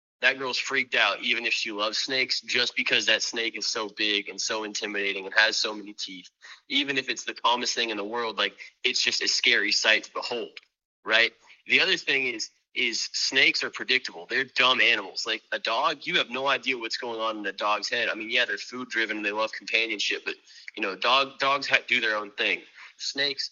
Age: 20-39